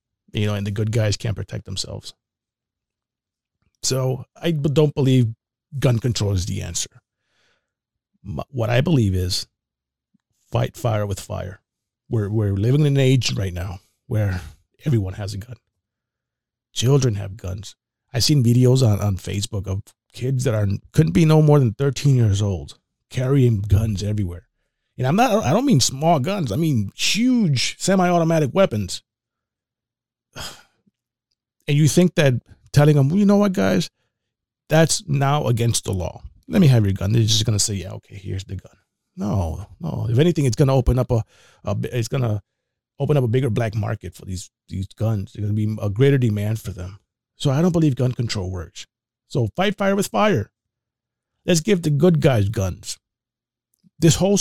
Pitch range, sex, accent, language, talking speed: 105-140 Hz, male, American, English, 180 wpm